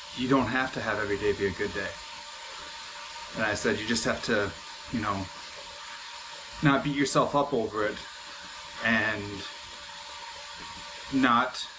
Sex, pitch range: male, 120-155 Hz